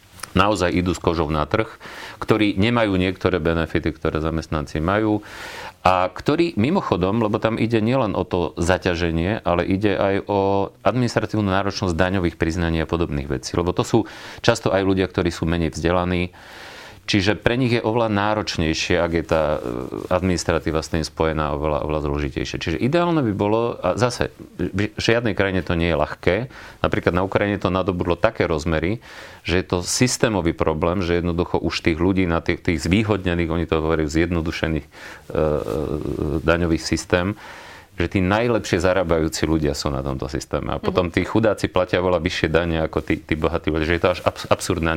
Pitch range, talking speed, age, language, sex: 80-105 Hz, 170 wpm, 40-59, Slovak, male